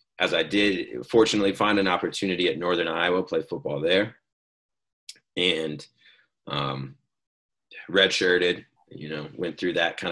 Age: 30-49